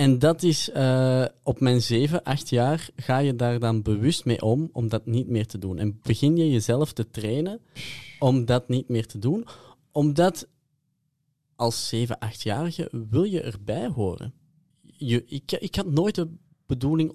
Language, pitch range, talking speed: Dutch, 110-140 Hz, 170 wpm